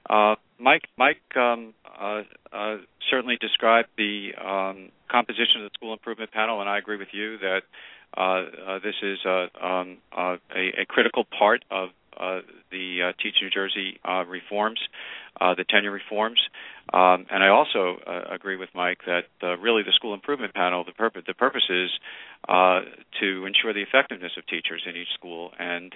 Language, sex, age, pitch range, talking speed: English, male, 50-69, 90-105 Hz, 180 wpm